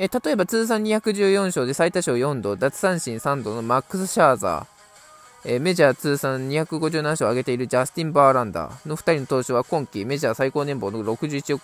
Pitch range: 120-165 Hz